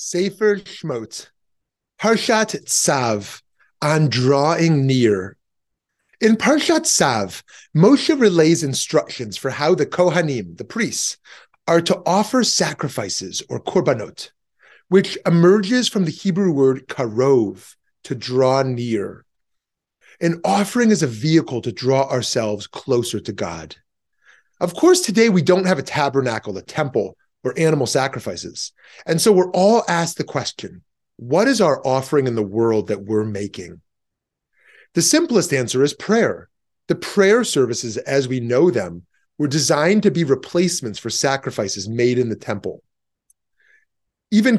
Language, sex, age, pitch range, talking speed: English, male, 30-49, 125-200 Hz, 135 wpm